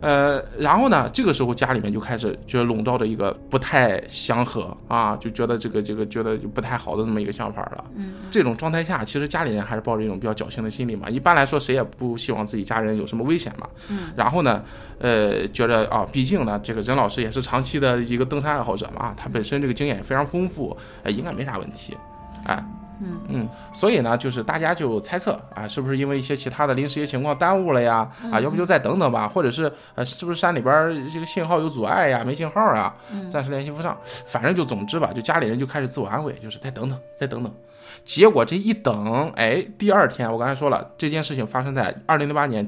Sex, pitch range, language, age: male, 115-155 Hz, Chinese, 20-39